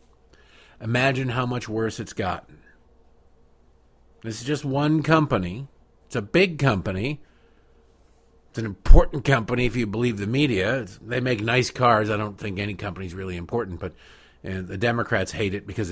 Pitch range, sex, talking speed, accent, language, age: 90-135 Hz, male, 160 wpm, American, English, 50-69